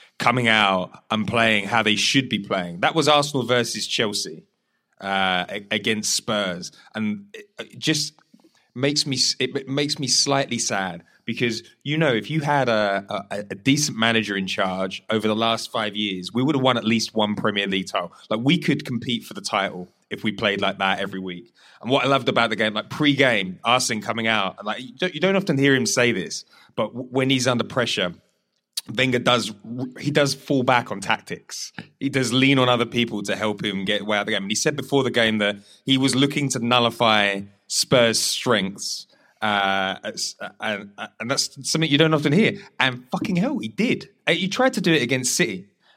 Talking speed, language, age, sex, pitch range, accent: 200 wpm, English, 20-39, male, 105-135 Hz, British